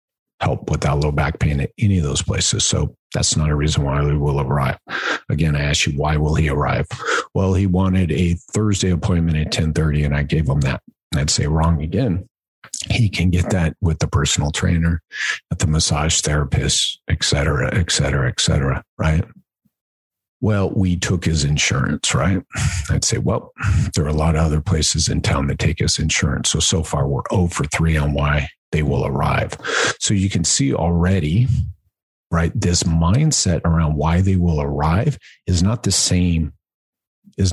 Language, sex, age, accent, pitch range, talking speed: English, male, 50-69, American, 75-95 Hz, 185 wpm